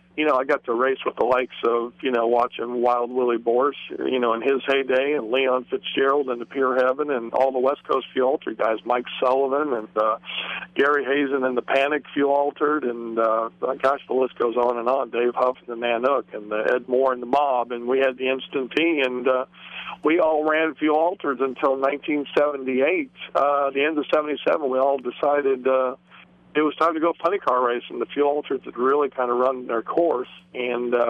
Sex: male